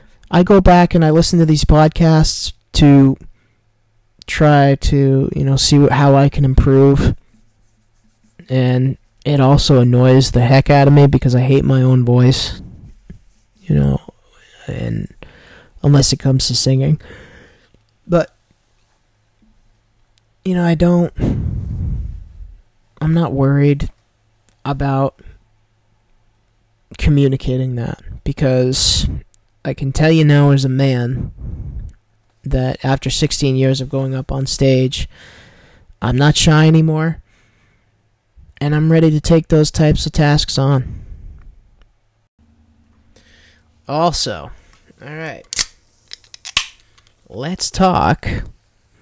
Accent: American